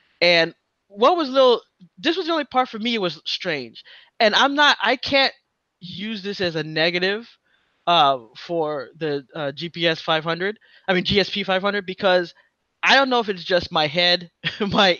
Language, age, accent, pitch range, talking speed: English, 20-39, American, 170-220 Hz, 175 wpm